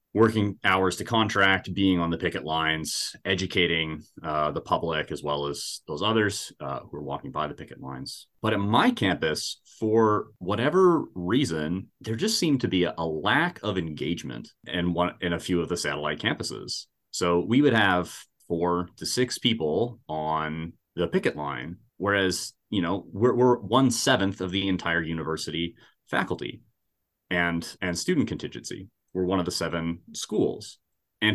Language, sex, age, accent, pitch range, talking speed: English, male, 30-49, American, 85-110 Hz, 165 wpm